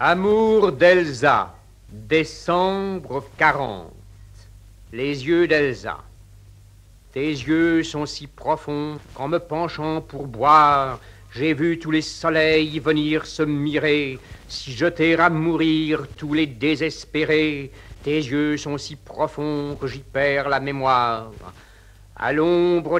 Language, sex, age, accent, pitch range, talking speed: French, male, 60-79, French, 125-160 Hz, 115 wpm